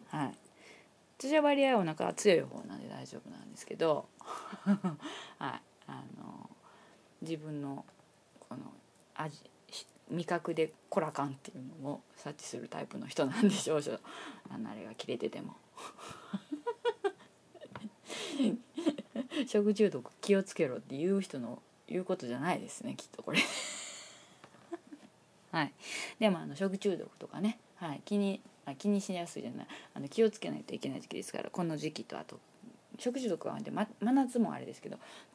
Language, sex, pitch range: Japanese, female, 170-240 Hz